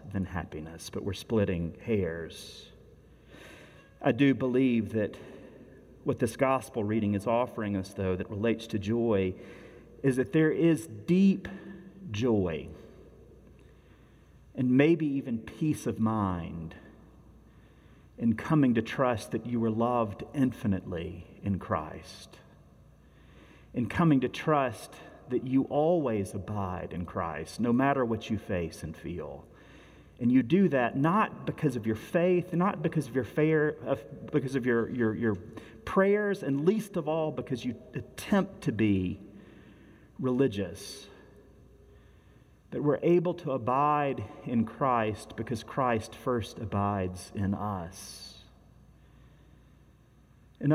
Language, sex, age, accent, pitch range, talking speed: English, male, 40-59, American, 100-135 Hz, 125 wpm